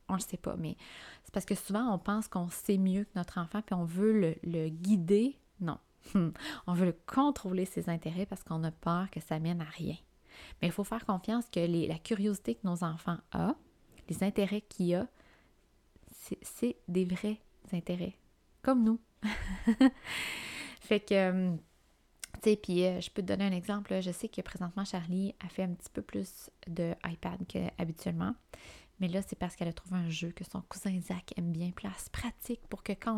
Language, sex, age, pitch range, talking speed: French, female, 20-39, 170-205 Hz, 195 wpm